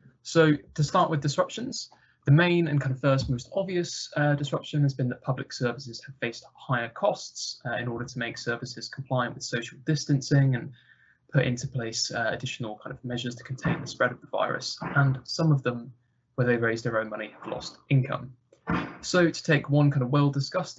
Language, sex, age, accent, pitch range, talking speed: English, male, 20-39, British, 120-140 Hz, 200 wpm